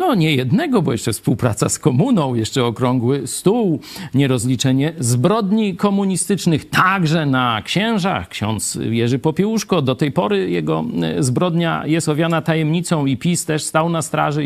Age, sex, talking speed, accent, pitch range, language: 50-69, male, 140 wpm, native, 125-165 Hz, Polish